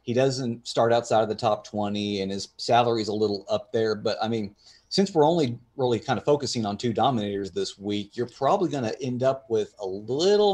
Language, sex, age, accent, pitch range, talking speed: English, male, 30-49, American, 105-125 Hz, 230 wpm